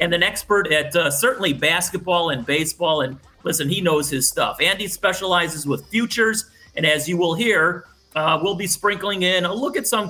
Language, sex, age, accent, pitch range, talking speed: English, male, 40-59, American, 155-205 Hz, 195 wpm